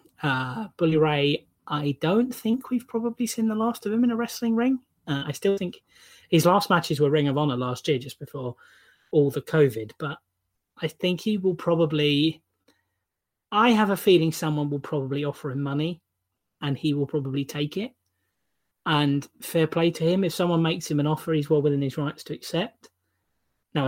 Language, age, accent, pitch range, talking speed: English, 30-49, British, 135-160 Hz, 190 wpm